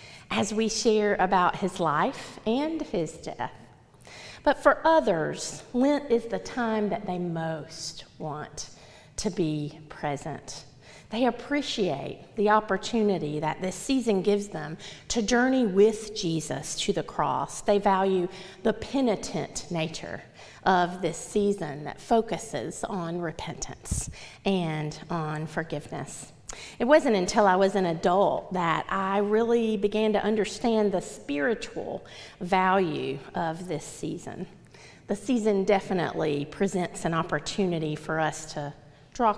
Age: 40-59